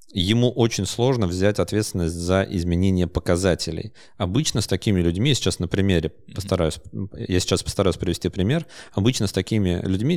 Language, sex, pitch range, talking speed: Russian, male, 90-120 Hz, 150 wpm